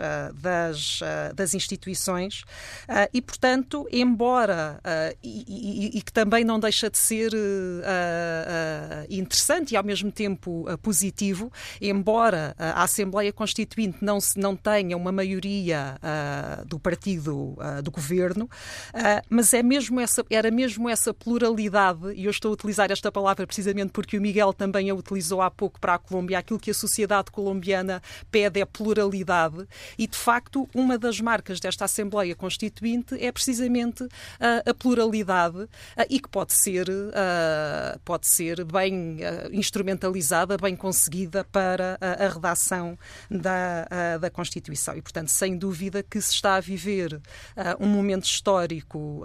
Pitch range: 175-215 Hz